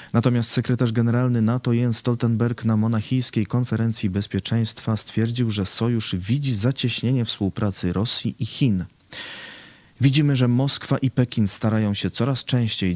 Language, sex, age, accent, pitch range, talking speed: Polish, male, 30-49, native, 100-125 Hz, 130 wpm